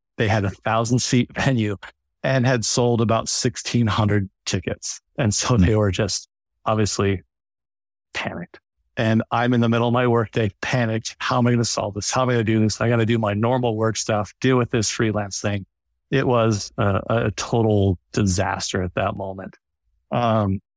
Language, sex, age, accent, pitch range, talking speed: English, male, 40-59, American, 105-120 Hz, 190 wpm